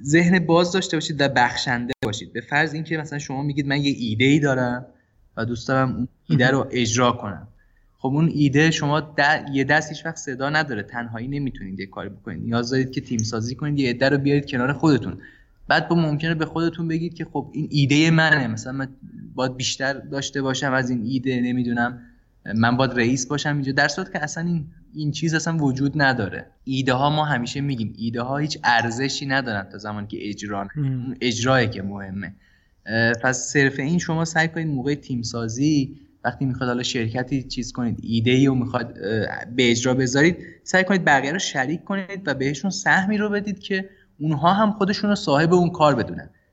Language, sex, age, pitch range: Persian, male, 20-39, 120-150 Hz